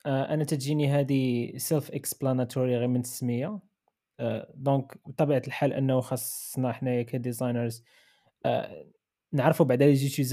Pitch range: 125-145 Hz